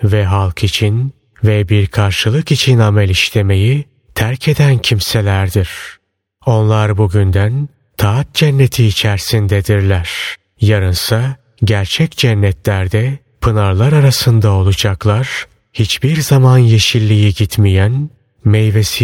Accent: native